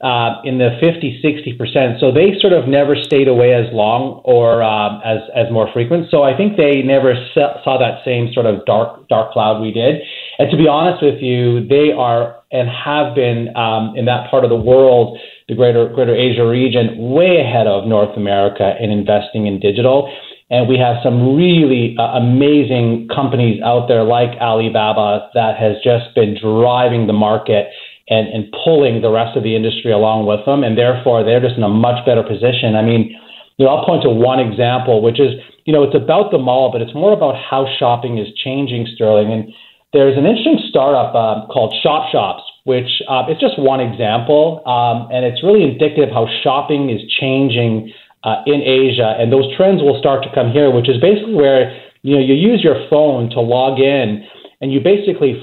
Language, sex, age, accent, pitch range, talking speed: English, male, 30-49, American, 115-140 Hz, 200 wpm